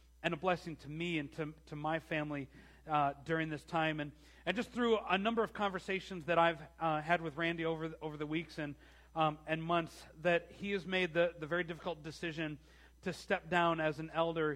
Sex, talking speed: male, 215 wpm